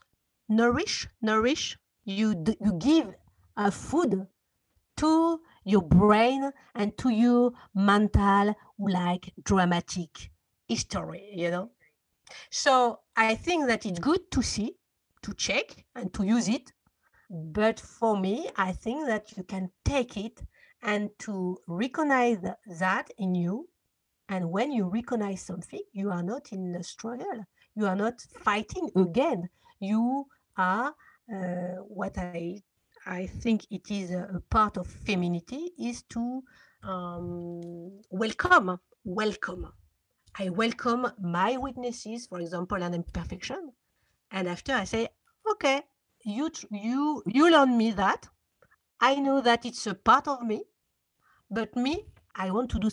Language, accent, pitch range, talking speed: English, French, 185-245 Hz, 135 wpm